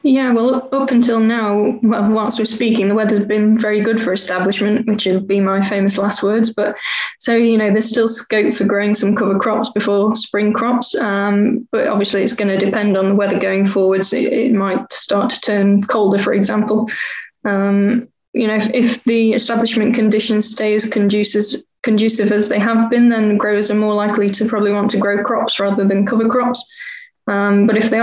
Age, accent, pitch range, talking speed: 10-29, British, 200-225 Hz, 200 wpm